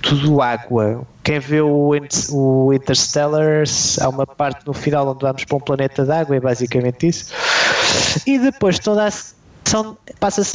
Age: 20-39